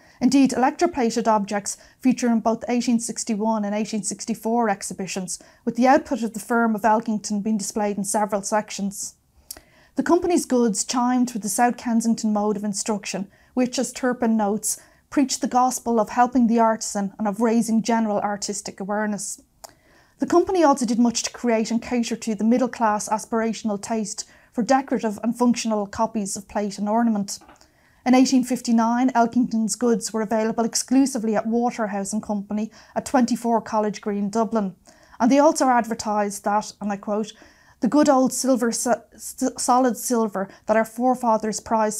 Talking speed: 155 wpm